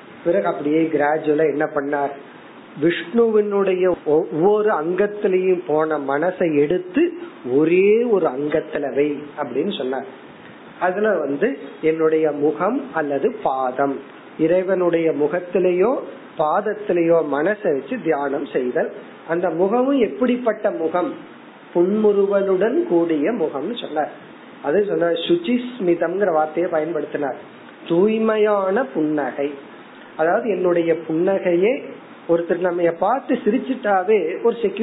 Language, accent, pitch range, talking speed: Tamil, native, 155-210 Hz, 50 wpm